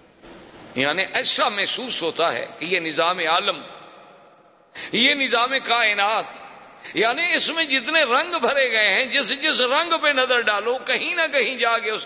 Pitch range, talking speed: 180-255 Hz, 160 wpm